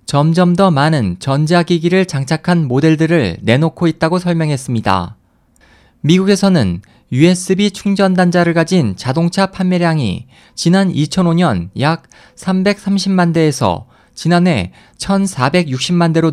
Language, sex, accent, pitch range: Korean, male, native, 135-180 Hz